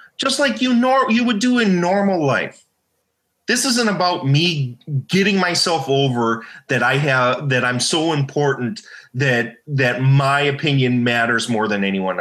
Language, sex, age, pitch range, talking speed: English, male, 30-49, 120-175 Hz, 160 wpm